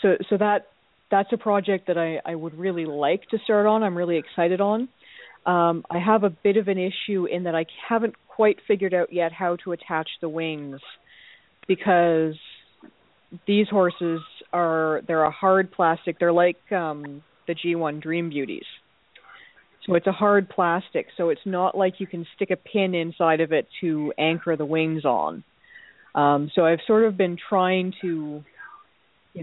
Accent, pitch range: American, 155-190 Hz